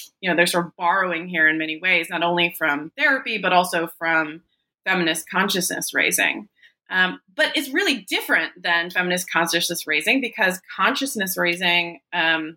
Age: 20-39